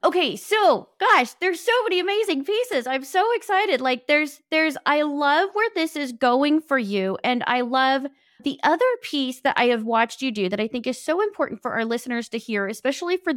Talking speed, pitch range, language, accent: 210 wpm, 205-285 Hz, English, American